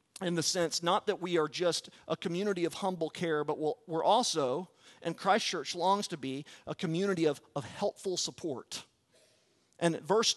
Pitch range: 130-185 Hz